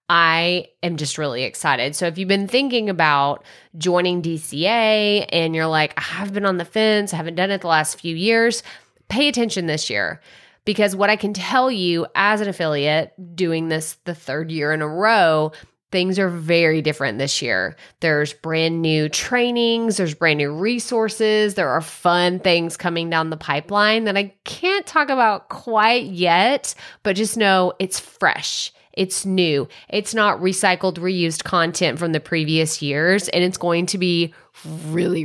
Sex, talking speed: female, 175 wpm